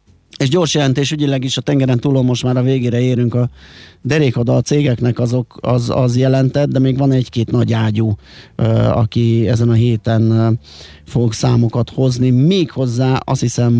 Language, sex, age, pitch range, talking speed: Hungarian, male, 30-49, 110-130 Hz, 170 wpm